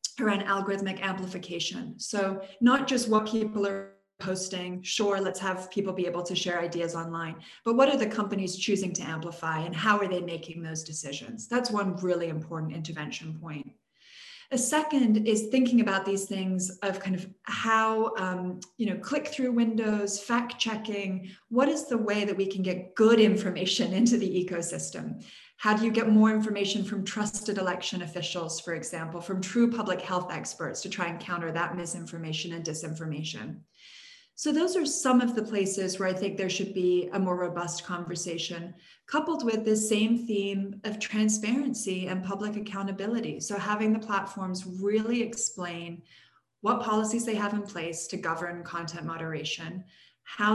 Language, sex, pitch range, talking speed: English, female, 175-220 Hz, 170 wpm